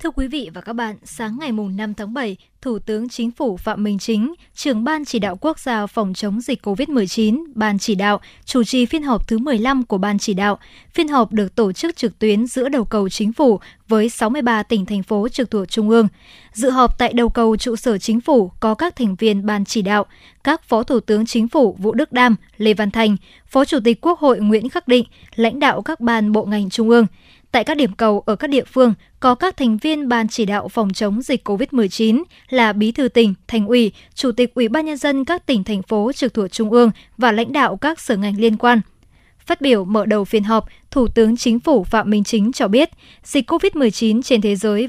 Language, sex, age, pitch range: Vietnamese, male, 20-39, 215-260 Hz